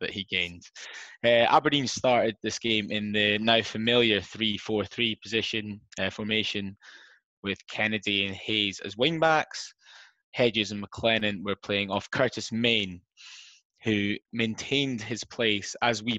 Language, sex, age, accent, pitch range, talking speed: English, male, 20-39, British, 100-120 Hz, 135 wpm